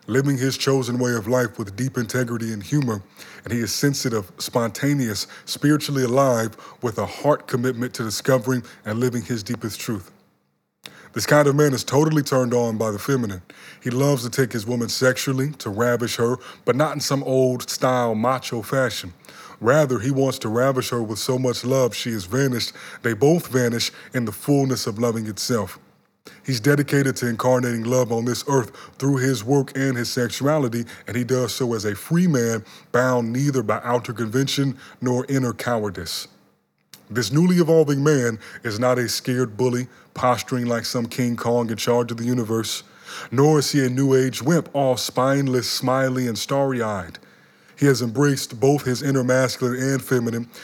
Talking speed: 175 wpm